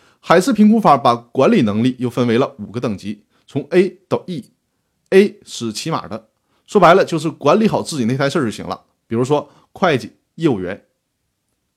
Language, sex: Chinese, male